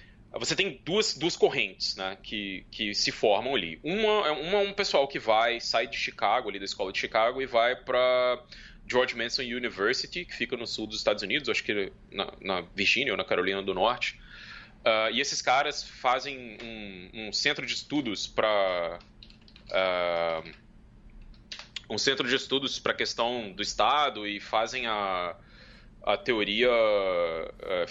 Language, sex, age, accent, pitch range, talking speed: Portuguese, male, 20-39, Brazilian, 110-175 Hz, 160 wpm